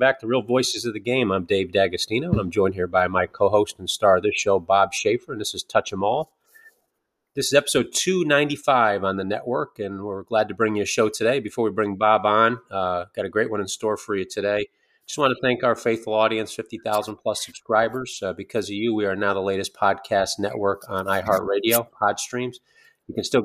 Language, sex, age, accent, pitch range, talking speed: English, male, 30-49, American, 100-125 Hz, 225 wpm